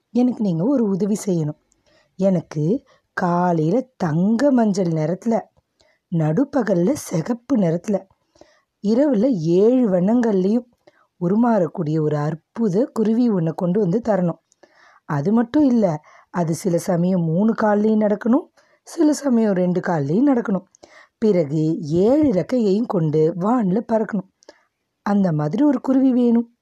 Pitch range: 175-240 Hz